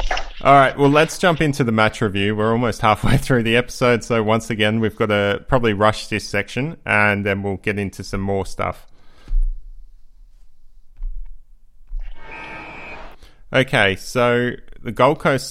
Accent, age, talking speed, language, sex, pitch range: Australian, 20-39, 145 wpm, English, male, 100-120 Hz